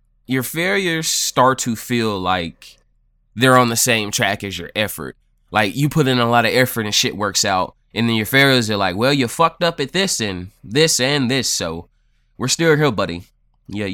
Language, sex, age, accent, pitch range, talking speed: English, male, 20-39, American, 95-130 Hz, 205 wpm